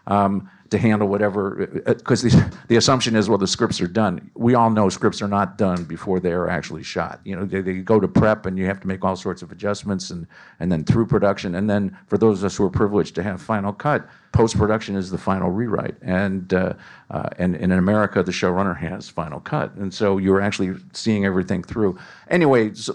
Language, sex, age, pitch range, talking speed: English, male, 50-69, 95-110 Hz, 225 wpm